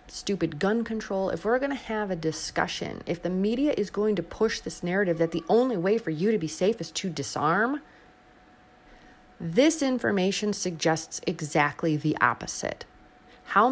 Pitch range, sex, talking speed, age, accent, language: 160-215 Hz, female, 165 wpm, 30-49, American, English